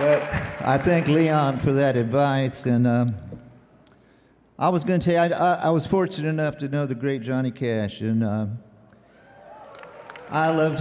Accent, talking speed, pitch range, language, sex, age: American, 165 wpm, 110-140 Hz, English, male, 50-69